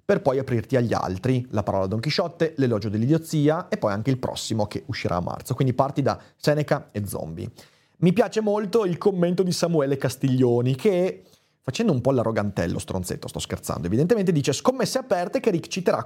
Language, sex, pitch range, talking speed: Italian, male, 120-175 Hz, 185 wpm